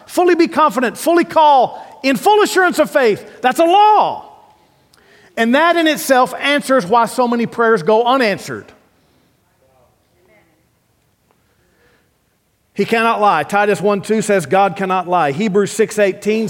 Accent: American